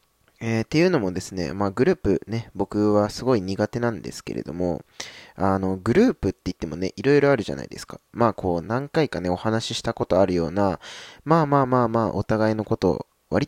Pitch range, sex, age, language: 90-115 Hz, male, 20-39, Japanese